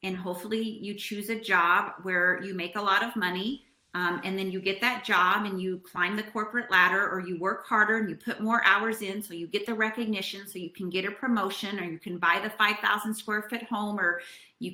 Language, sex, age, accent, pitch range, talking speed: English, female, 30-49, American, 190-225 Hz, 235 wpm